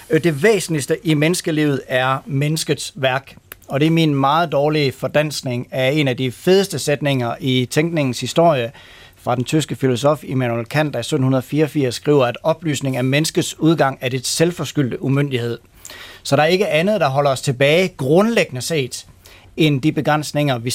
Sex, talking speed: male, 165 wpm